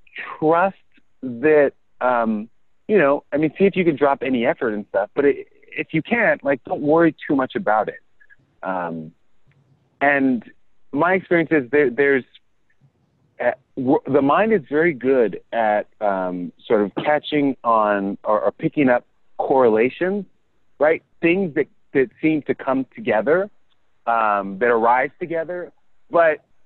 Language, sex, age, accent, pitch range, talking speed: English, male, 30-49, American, 120-180 Hz, 140 wpm